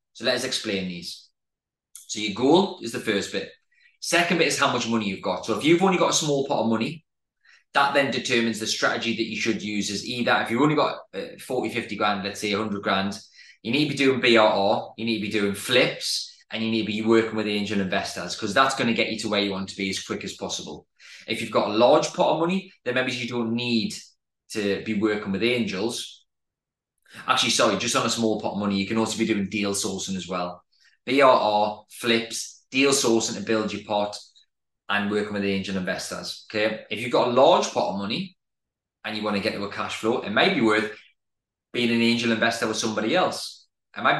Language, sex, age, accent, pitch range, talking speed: English, male, 20-39, British, 105-120 Hz, 230 wpm